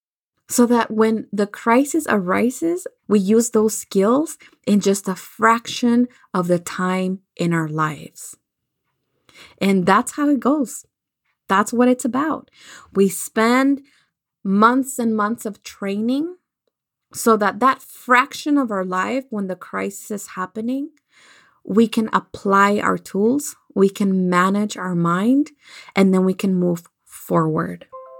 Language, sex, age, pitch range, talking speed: English, female, 20-39, 185-245 Hz, 135 wpm